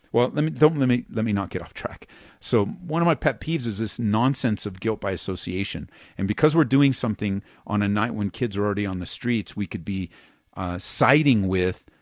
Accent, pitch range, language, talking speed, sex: American, 95-125 Hz, English, 230 wpm, male